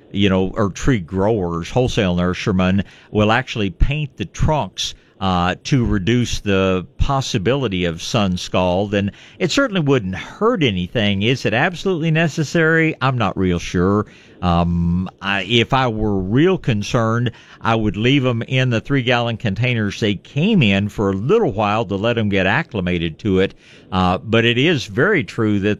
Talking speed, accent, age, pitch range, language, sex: 165 wpm, American, 50-69, 95-130 Hz, English, male